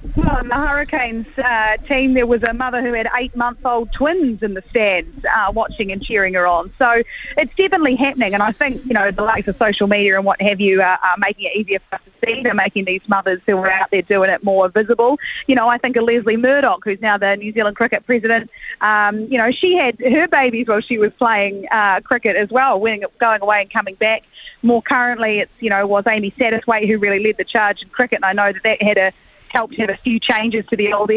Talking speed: 245 wpm